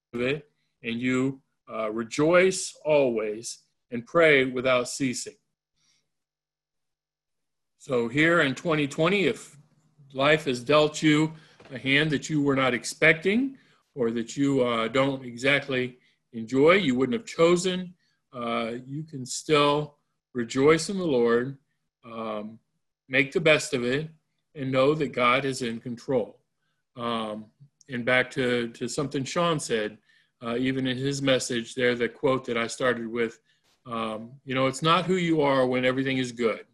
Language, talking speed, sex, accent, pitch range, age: English, 150 wpm, male, American, 120-150 Hz, 50-69